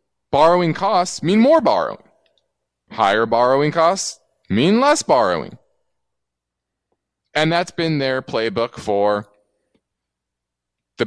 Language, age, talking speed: English, 20-39, 100 wpm